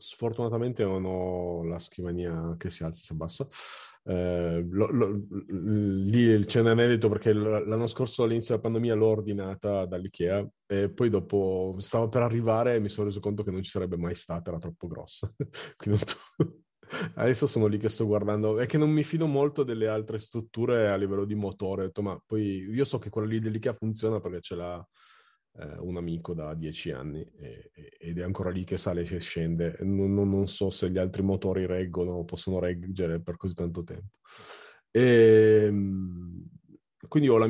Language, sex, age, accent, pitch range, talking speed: Italian, male, 30-49, native, 90-110 Hz, 180 wpm